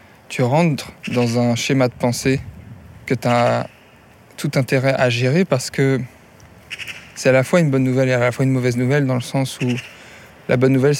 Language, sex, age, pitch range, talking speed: French, male, 20-39, 120-135 Hz, 200 wpm